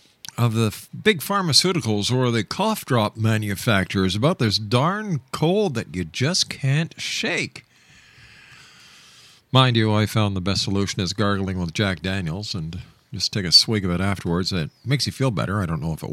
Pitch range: 100-135 Hz